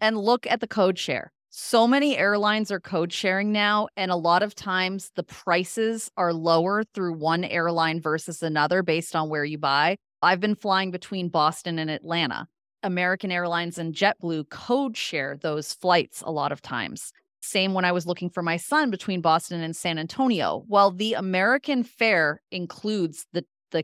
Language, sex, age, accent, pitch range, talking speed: English, female, 30-49, American, 165-200 Hz, 180 wpm